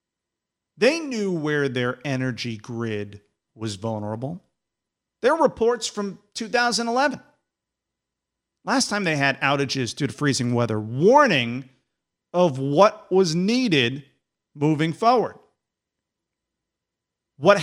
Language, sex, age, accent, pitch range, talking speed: English, male, 50-69, American, 125-210 Hz, 100 wpm